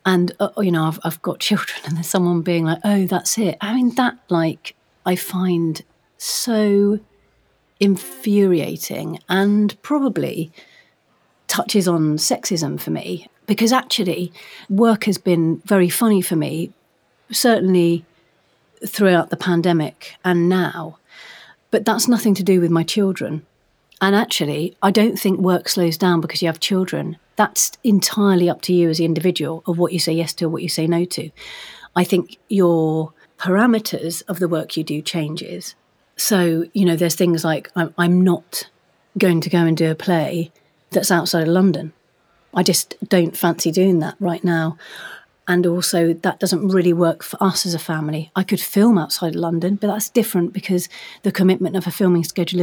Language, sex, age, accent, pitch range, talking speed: English, female, 40-59, British, 165-200 Hz, 170 wpm